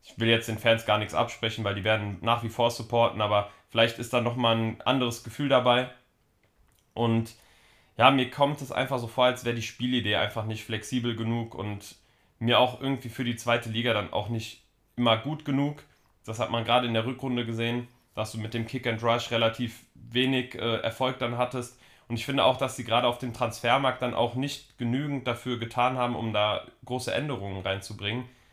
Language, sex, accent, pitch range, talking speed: German, male, German, 110-125 Hz, 205 wpm